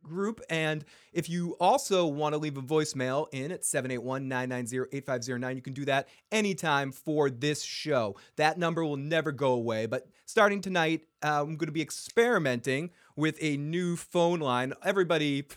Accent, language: American, English